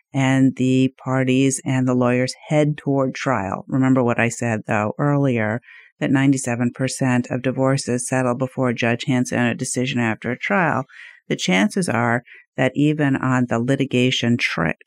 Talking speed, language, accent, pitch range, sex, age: 155 wpm, English, American, 125-145 Hz, female, 50-69